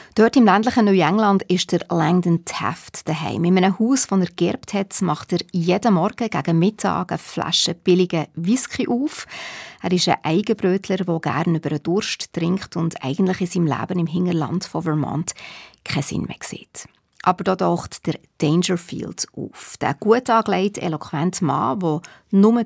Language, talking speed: German, 170 wpm